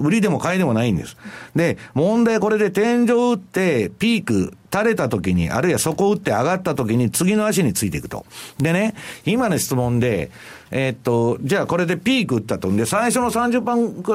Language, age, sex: Japanese, 50-69, male